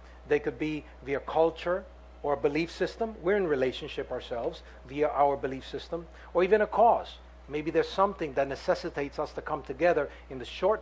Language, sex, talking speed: English, male, 185 wpm